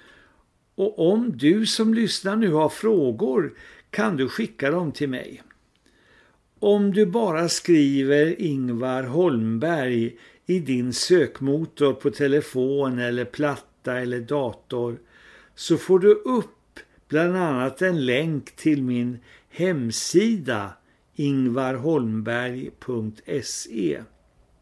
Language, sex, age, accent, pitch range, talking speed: Swedish, male, 60-79, native, 120-170 Hz, 100 wpm